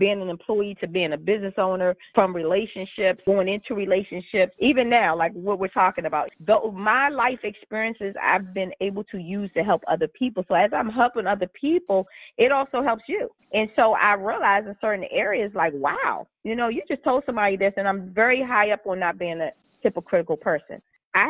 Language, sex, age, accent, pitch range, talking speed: English, female, 30-49, American, 180-220 Hz, 200 wpm